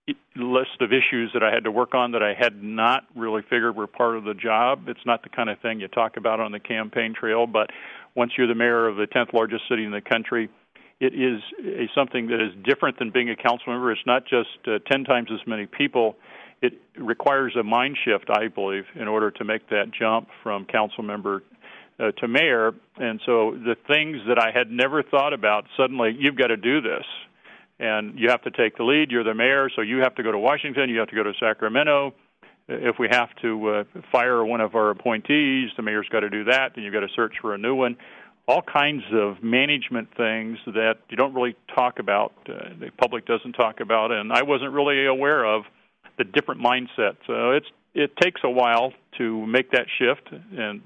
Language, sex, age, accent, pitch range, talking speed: English, male, 50-69, American, 110-130 Hz, 220 wpm